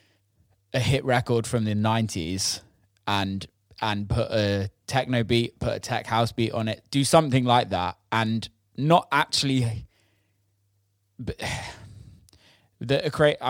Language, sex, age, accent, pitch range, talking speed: English, male, 10-29, British, 100-120 Hz, 125 wpm